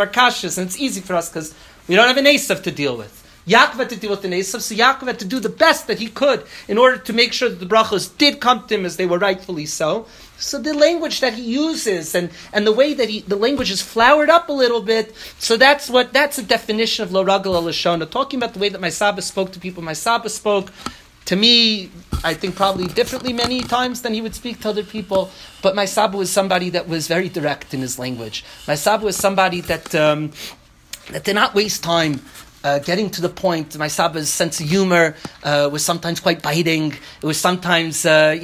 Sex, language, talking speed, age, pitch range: male, English, 230 wpm, 40-59, 165-215 Hz